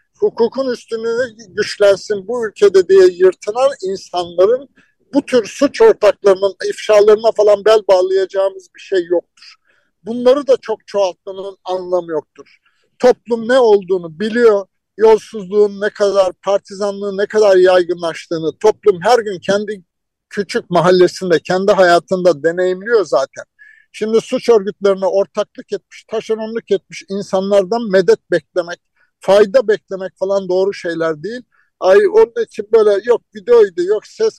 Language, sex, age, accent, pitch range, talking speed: Turkish, male, 60-79, native, 185-240 Hz, 120 wpm